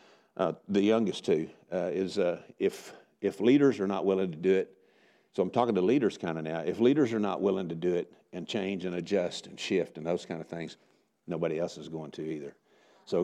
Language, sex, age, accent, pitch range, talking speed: English, male, 50-69, American, 95-115 Hz, 225 wpm